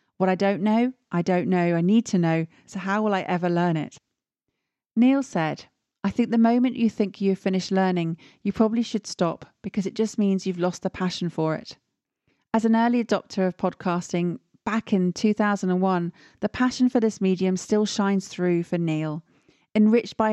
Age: 40-59